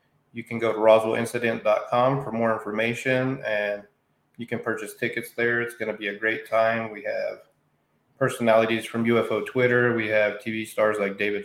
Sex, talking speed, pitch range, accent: male, 175 wpm, 110-120 Hz, American